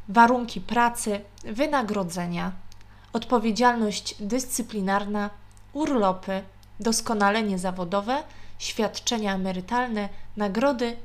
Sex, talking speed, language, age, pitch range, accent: female, 60 wpm, Polish, 20-39, 195-250 Hz, native